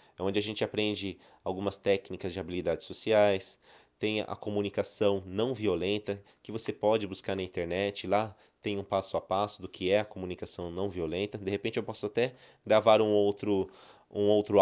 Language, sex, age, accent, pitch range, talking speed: Portuguese, male, 20-39, Brazilian, 95-115 Hz, 175 wpm